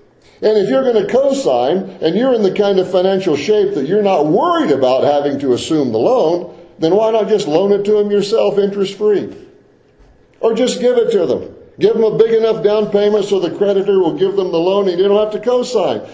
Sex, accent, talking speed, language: male, American, 225 wpm, English